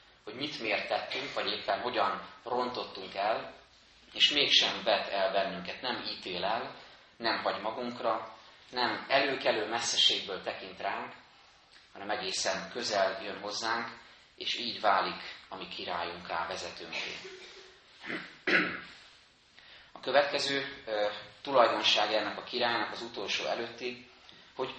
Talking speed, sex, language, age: 115 wpm, male, Hungarian, 30-49